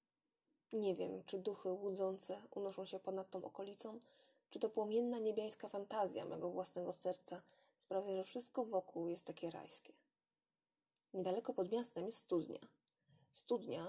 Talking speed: 135 wpm